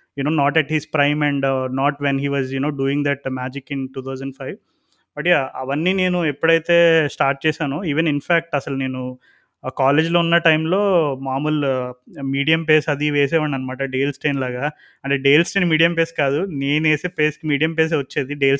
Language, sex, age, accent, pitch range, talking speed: Telugu, male, 20-39, native, 135-160 Hz, 200 wpm